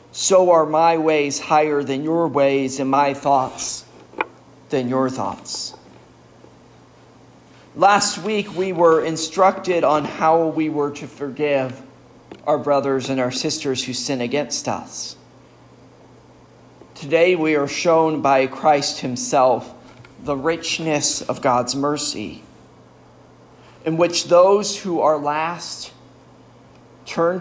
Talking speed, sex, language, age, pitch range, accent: 115 wpm, male, English, 40-59, 135-165 Hz, American